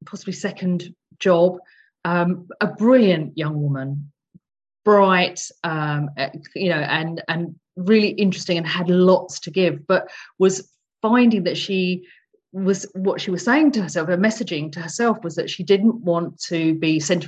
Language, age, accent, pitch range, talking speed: English, 40-59, British, 165-215 Hz, 155 wpm